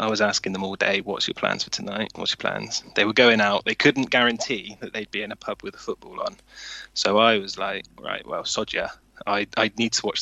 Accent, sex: British, male